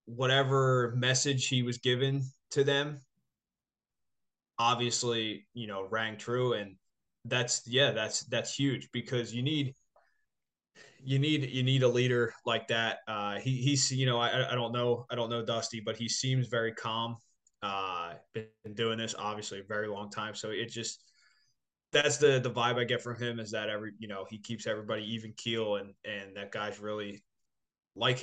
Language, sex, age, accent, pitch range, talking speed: English, male, 20-39, American, 115-135 Hz, 175 wpm